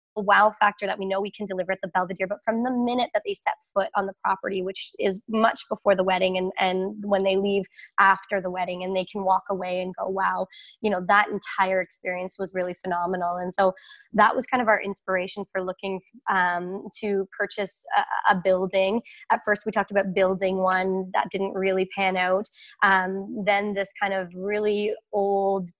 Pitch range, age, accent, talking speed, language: 190-210 Hz, 20-39, American, 200 wpm, English